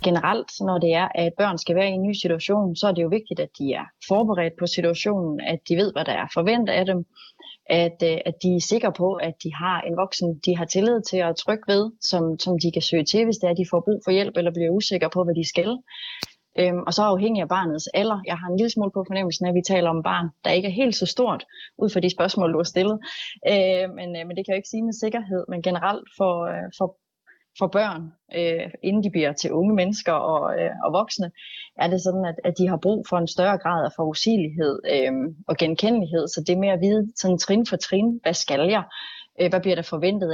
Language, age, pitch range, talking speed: Danish, 30-49, 170-200 Hz, 235 wpm